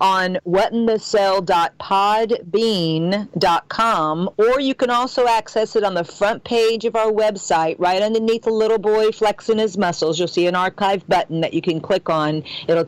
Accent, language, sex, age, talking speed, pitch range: American, English, female, 50-69, 175 wpm, 180-220 Hz